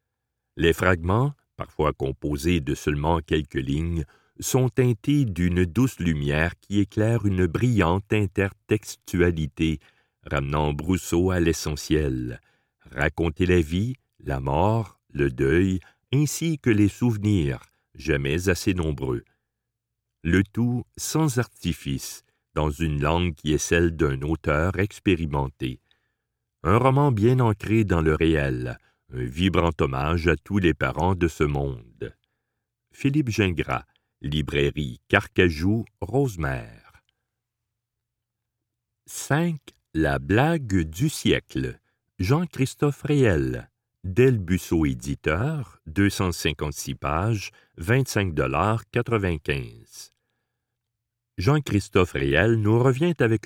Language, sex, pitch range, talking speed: French, male, 80-115 Hz, 100 wpm